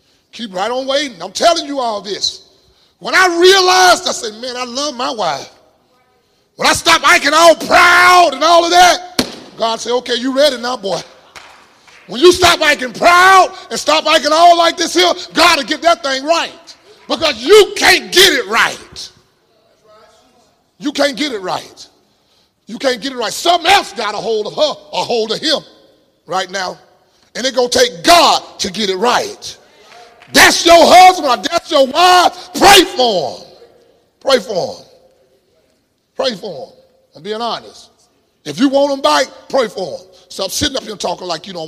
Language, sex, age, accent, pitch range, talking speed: English, male, 30-49, American, 220-345 Hz, 185 wpm